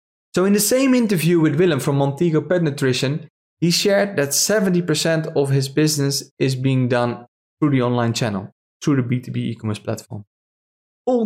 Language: English